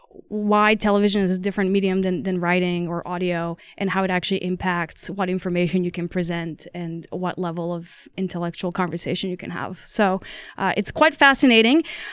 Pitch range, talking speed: 195-240 Hz, 175 wpm